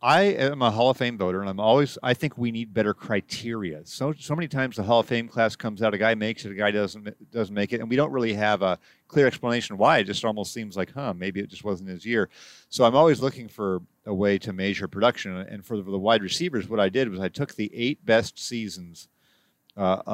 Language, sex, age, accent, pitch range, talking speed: English, male, 40-59, American, 100-125 Hz, 250 wpm